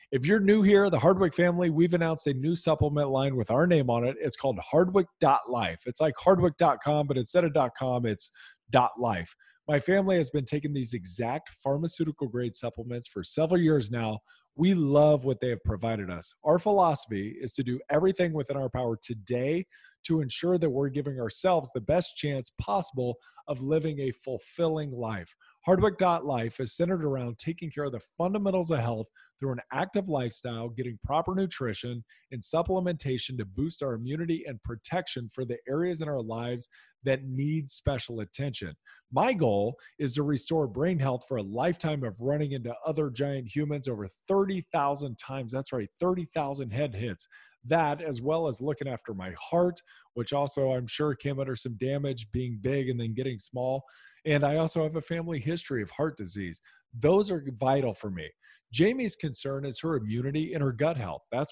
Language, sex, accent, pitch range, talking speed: English, male, American, 125-160 Hz, 180 wpm